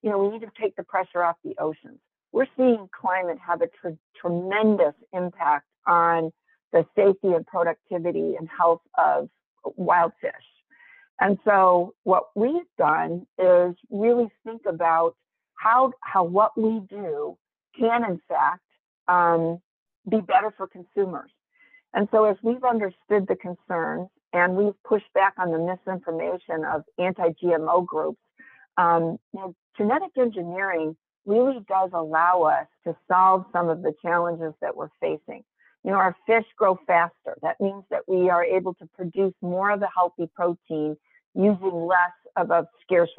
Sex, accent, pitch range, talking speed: female, American, 170-215 Hz, 150 wpm